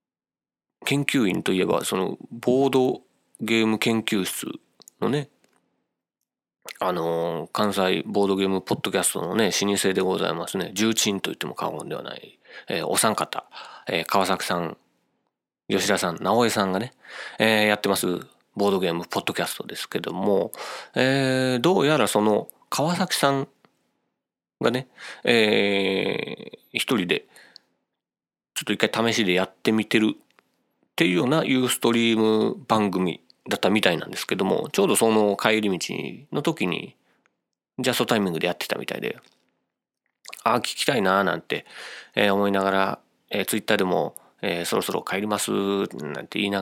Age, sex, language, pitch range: 30-49, male, Japanese, 95-115 Hz